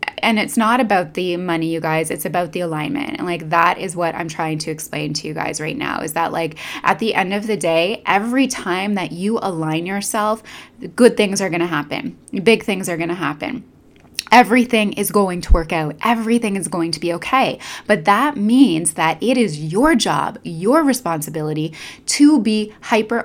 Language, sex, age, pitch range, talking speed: English, female, 20-39, 165-220 Hz, 200 wpm